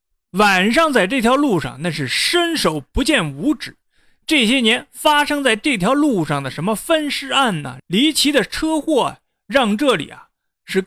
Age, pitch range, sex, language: 30-49, 180-285 Hz, male, Chinese